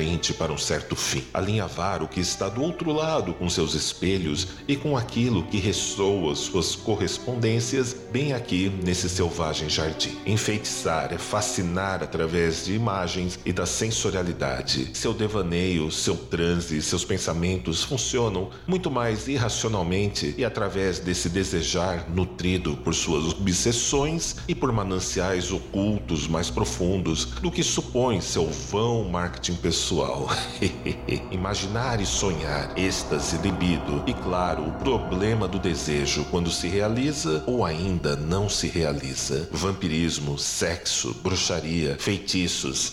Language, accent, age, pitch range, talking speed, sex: Portuguese, Brazilian, 40-59, 85-110 Hz, 125 wpm, male